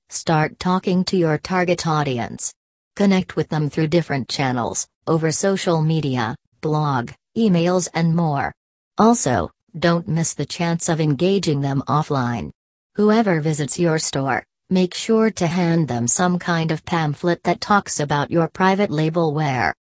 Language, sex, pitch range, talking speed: English, female, 150-175 Hz, 145 wpm